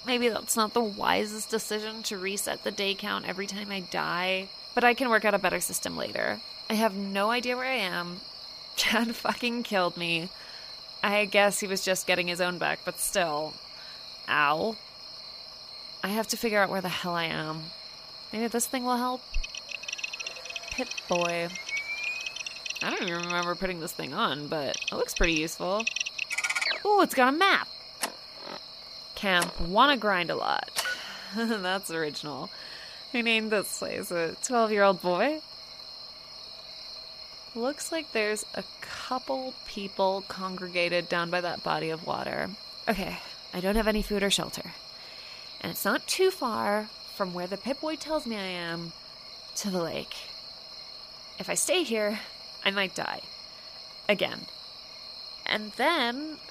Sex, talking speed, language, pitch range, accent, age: female, 155 wpm, English, 175-235 Hz, American, 20-39